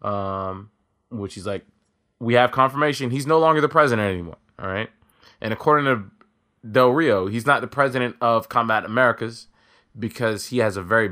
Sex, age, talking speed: male, 20-39, 175 wpm